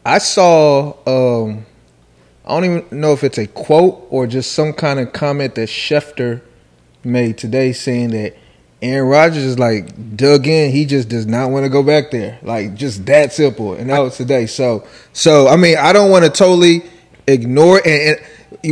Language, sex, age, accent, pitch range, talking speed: English, male, 20-39, American, 130-165 Hz, 185 wpm